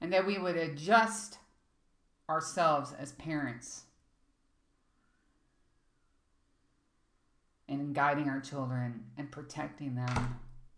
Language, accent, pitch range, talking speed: English, American, 120-160 Hz, 85 wpm